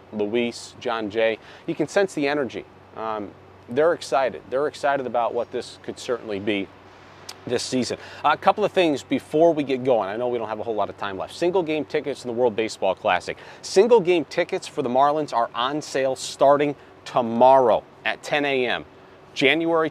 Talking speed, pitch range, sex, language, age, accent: 195 wpm, 120-150 Hz, male, English, 30-49, American